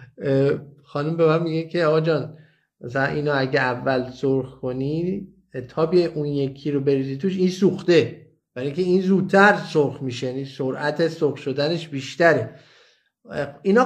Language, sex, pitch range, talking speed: Persian, male, 135-180 Hz, 135 wpm